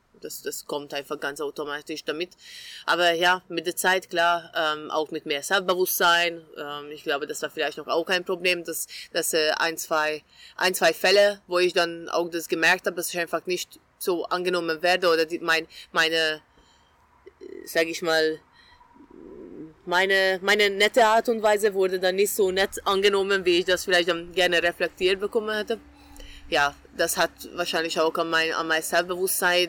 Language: German